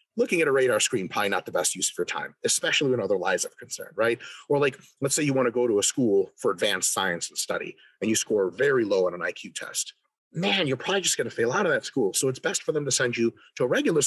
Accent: American